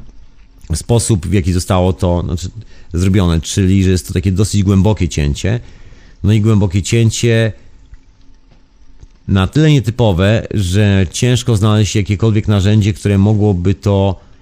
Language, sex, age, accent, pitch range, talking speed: Polish, male, 40-59, native, 90-115 Hz, 125 wpm